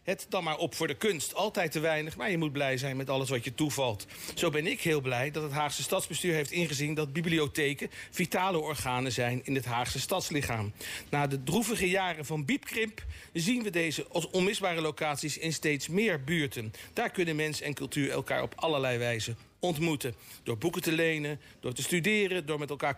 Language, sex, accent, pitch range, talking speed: Dutch, male, Dutch, 140-180 Hz, 200 wpm